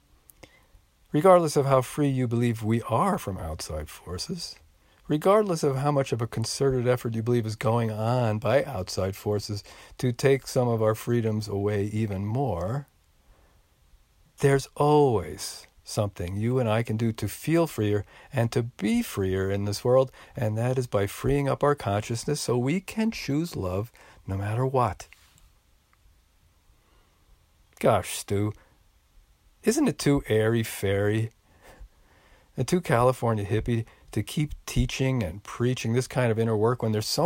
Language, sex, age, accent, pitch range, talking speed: English, male, 50-69, American, 100-140 Hz, 150 wpm